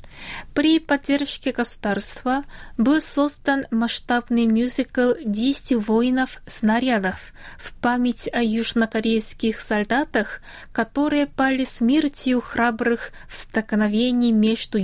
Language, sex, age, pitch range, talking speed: Russian, female, 20-39, 220-260 Hz, 90 wpm